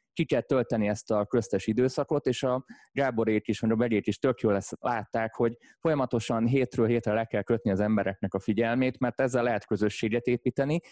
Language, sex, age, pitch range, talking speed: Hungarian, male, 20-39, 105-125 Hz, 180 wpm